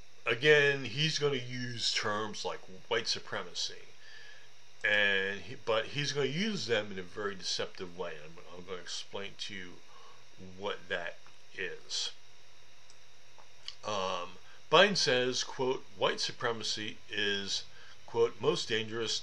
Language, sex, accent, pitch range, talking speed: English, male, American, 95-140 Hz, 135 wpm